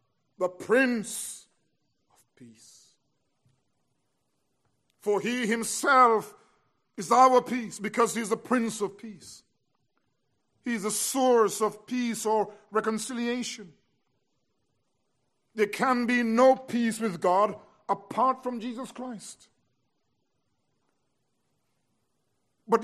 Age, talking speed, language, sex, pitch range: 50-69, 95 wpm, English, male, 205-245 Hz